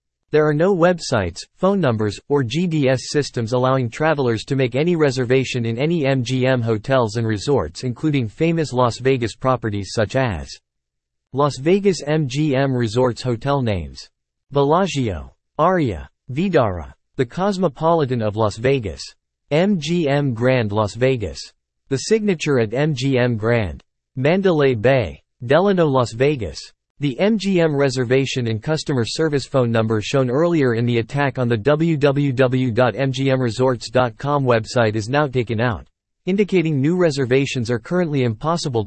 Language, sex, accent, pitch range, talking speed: English, male, American, 115-150 Hz, 130 wpm